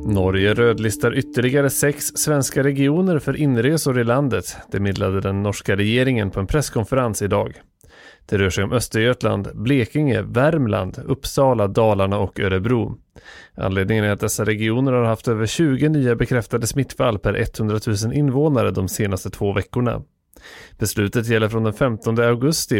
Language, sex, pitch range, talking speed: English, male, 105-140 Hz, 145 wpm